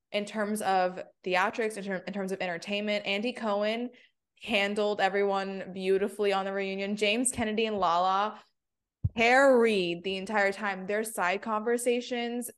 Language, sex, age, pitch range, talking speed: English, female, 20-39, 185-215 Hz, 130 wpm